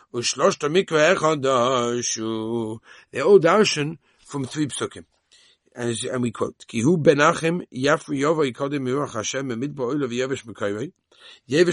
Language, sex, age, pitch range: English, male, 60-79, 125-175 Hz